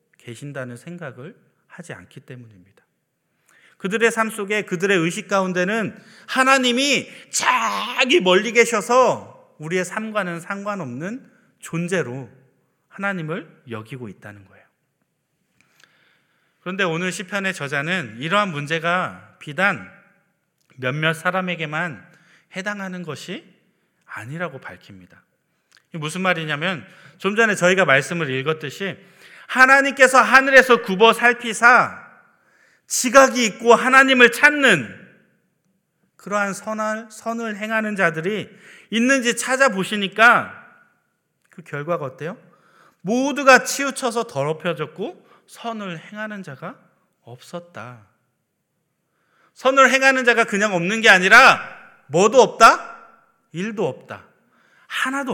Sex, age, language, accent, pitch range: male, 30-49, Korean, native, 165-230 Hz